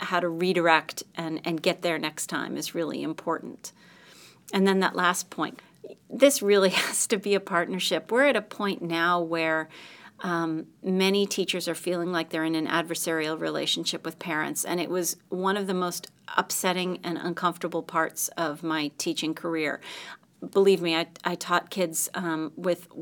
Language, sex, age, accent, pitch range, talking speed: English, female, 40-59, American, 165-195 Hz, 170 wpm